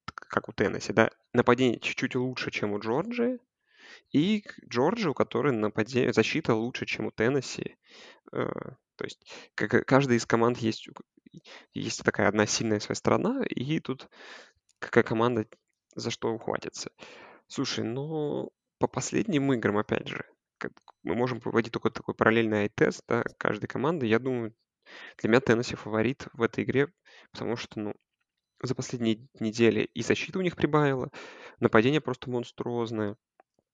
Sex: male